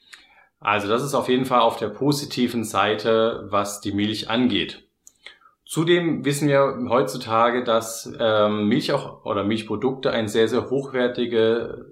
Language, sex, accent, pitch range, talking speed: German, male, German, 105-130 Hz, 135 wpm